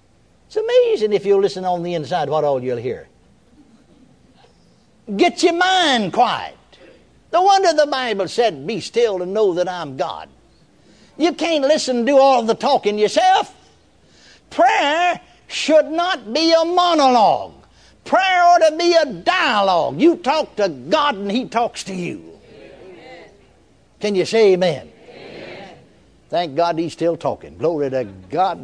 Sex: male